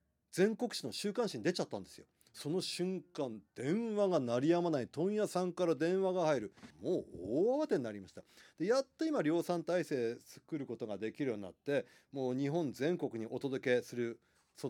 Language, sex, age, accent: Japanese, male, 40-59, native